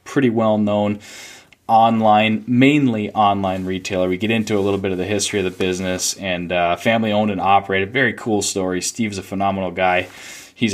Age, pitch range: 20-39, 95-110 Hz